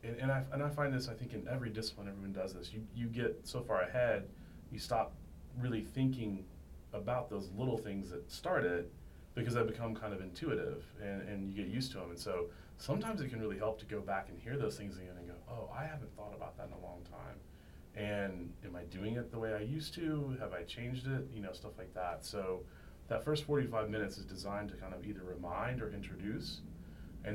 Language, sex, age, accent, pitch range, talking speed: English, male, 30-49, American, 90-110 Hz, 230 wpm